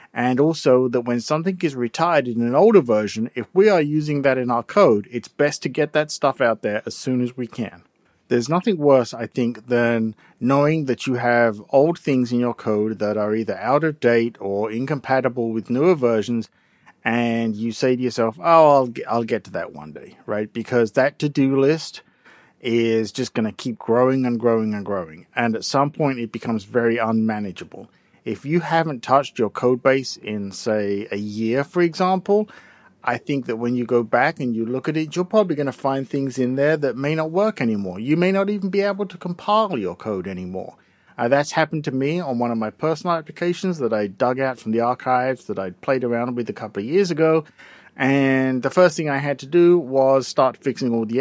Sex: male